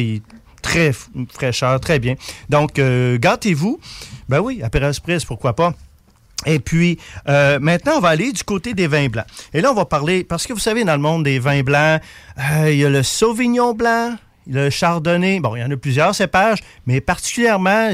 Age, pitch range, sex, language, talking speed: 40-59, 135-180 Hz, male, French, 195 wpm